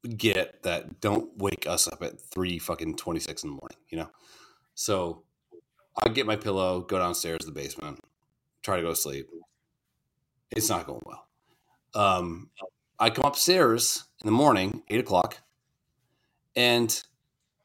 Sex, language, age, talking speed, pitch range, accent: male, English, 30-49, 150 wpm, 95-135 Hz, American